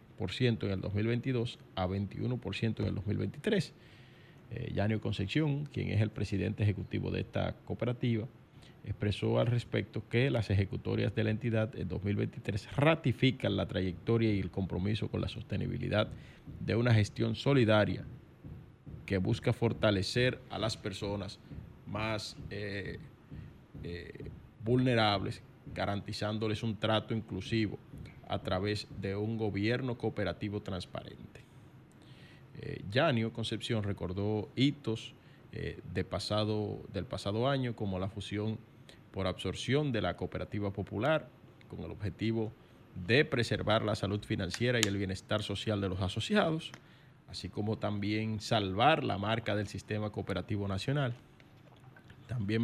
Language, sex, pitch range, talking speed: Spanish, male, 100-120 Hz, 120 wpm